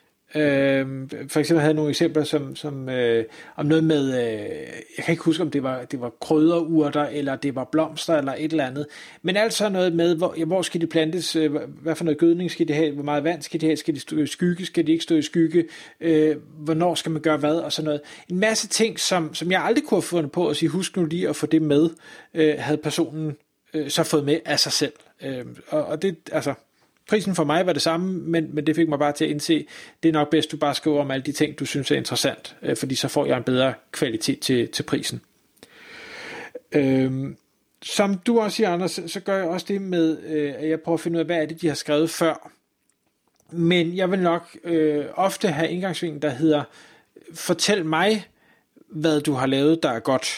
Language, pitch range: Danish, 150-175 Hz